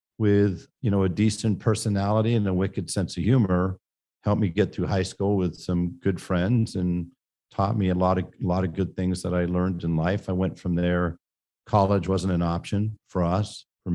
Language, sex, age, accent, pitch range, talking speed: English, male, 50-69, American, 85-100 Hz, 210 wpm